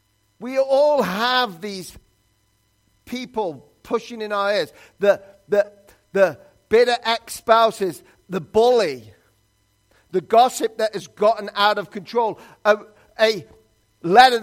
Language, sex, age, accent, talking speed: English, male, 50-69, British, 110 wpm